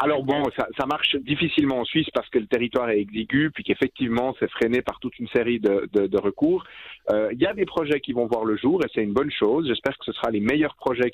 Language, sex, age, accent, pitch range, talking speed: French, male, 40-59, French, 120-150 Hz, 265 wpm